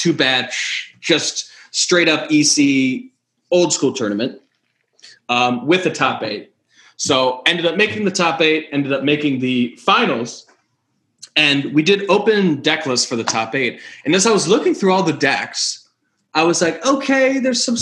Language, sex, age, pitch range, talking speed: English, male, 20-39, 125-170 Hz, 170 wpm